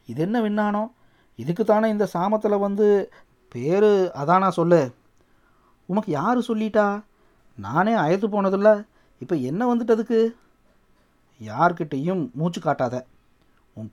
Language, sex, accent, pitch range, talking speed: Tamil, male, native, 145-195 Hz, 100 wpm